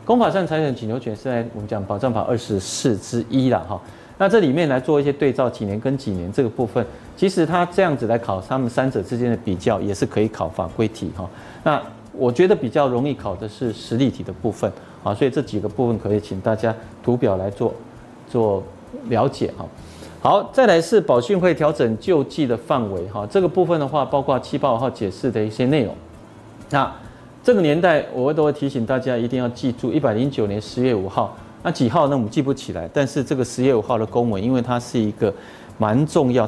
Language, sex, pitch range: Chinese, male, 110-145 Hz